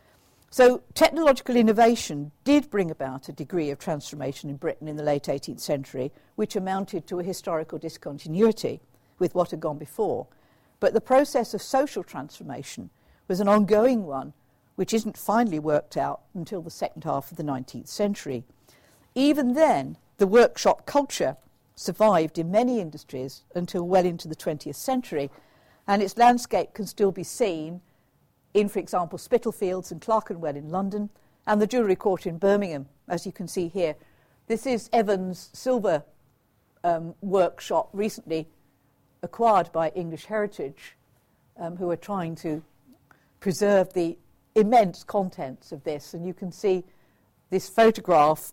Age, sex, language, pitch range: 50-69, female, English, 150-210 Hz